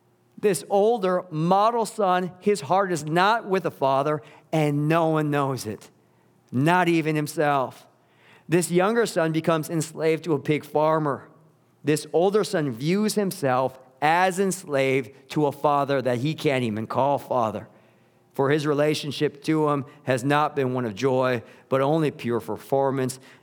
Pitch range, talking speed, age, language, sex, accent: 125-150 Hz, 150 wpm, 50-69, English, male, American